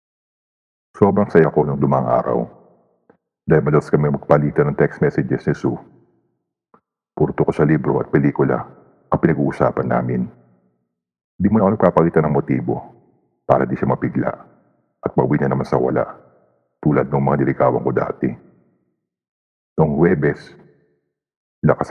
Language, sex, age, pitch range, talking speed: Filipino, male, 50-69, 65-75 Hz, 130 wpm